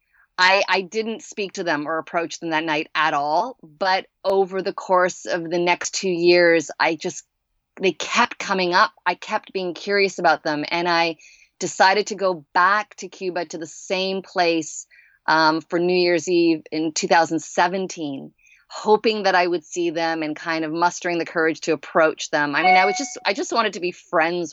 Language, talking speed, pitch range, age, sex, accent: English, 195 wpm, 165-190 Hz, 30-49, female, American